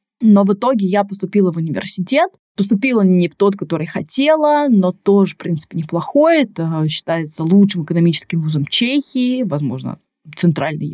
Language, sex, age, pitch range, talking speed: Russian, female, 20-39, 170-215 Hz, 145 wpm